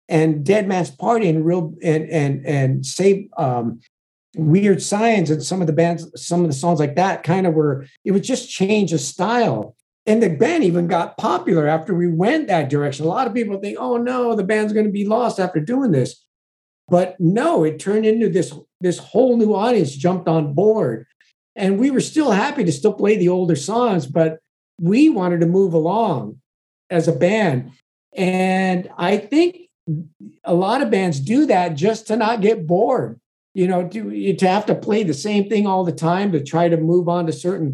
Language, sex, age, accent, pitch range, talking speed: English, male, 50-69, American, 160-200 Hz, 200 wpm